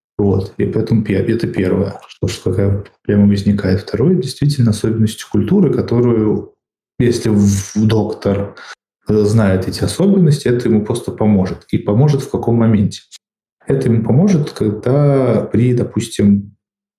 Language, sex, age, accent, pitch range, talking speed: Russian, male, 20-39, native, 100-115 Hz, 120 wpm